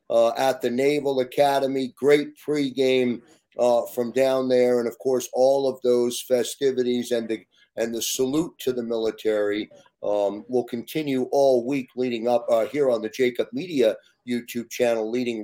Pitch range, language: 120-150 Hz, English